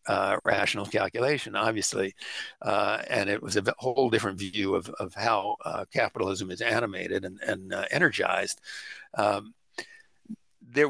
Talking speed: 140 wpm